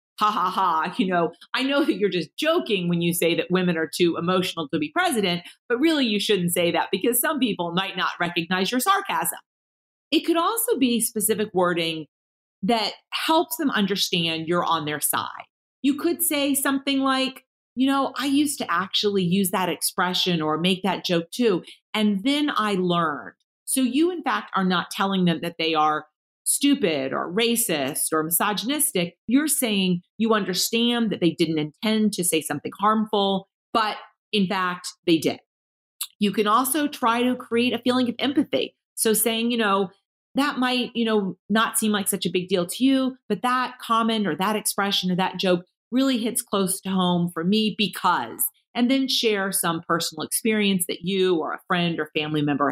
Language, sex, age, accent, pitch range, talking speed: English, female, 40-59, American, 180-250 Hz, 185 wpm